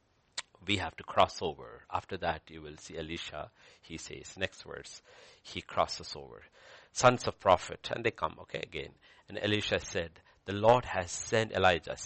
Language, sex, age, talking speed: English, male, 60-79, 170 wpm